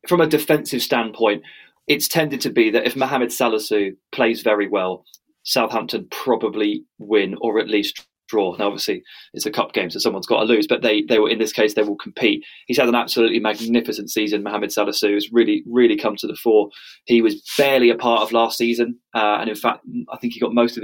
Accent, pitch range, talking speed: British, 115-135 Hz, 215 wpm